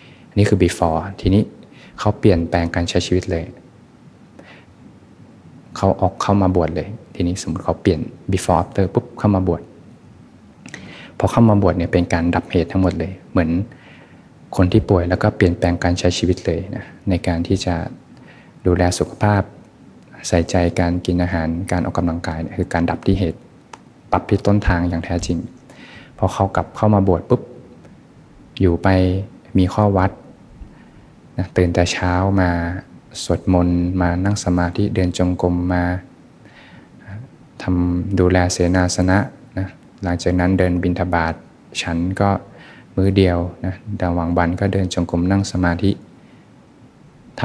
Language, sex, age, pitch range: Thai, male, 20-39, 85-95 Hz